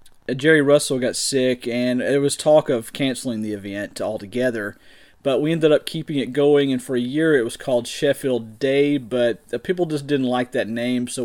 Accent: American